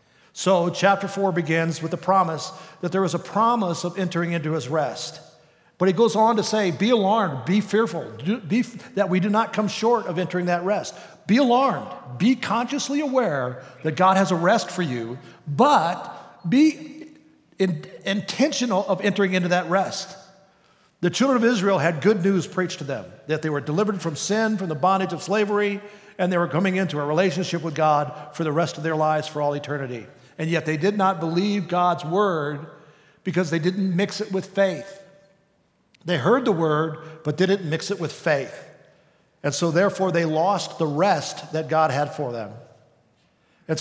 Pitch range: 155-195 Hz